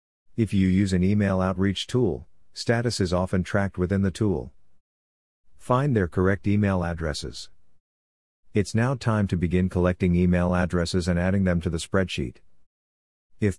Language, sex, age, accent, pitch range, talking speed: English, male, 50-69, American, 85-105 Hz, 150 wpm